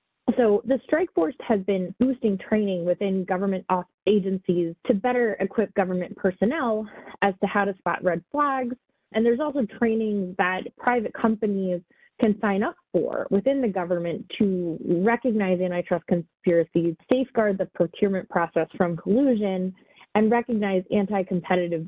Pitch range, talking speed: 180-230 Hz, 135 wpm